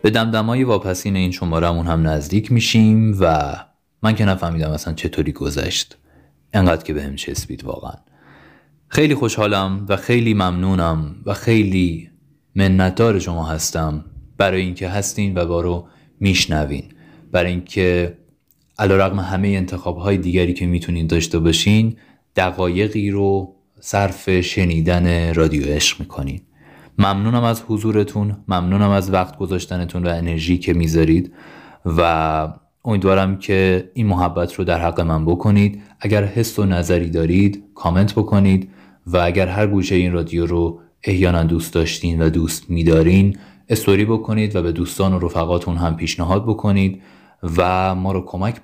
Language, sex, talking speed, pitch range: Persian, male, 135 wpm, 85-100 Hz